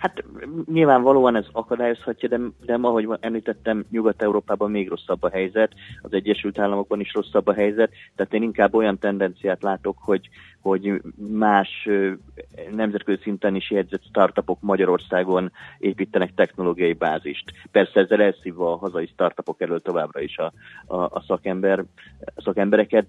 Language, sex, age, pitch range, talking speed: Hungarian, male, 30-49, 90-110 Hz, 140 wpm